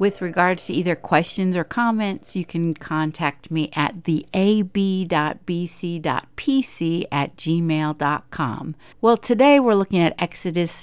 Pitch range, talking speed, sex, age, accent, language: 160-205 Hz, 115 wpm, female, 50-69, American, English